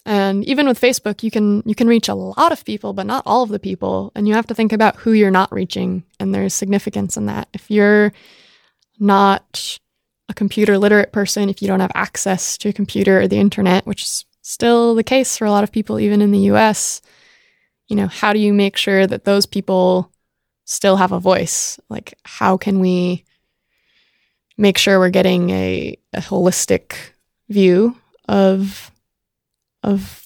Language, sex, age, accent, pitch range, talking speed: English, female, 20-39, American, 190-220 Hz, 190 wpm